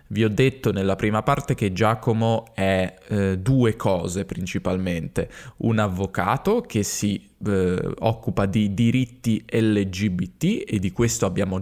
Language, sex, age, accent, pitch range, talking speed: Italian, male, 10-29, native, 100-125 Hz, 135 wpm